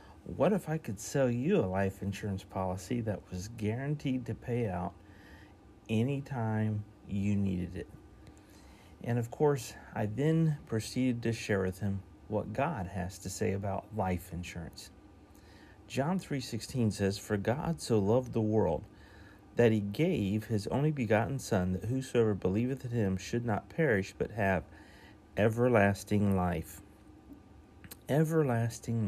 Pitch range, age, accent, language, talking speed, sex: 100-115 Hz, 40-59, American, English, 140 wpm, male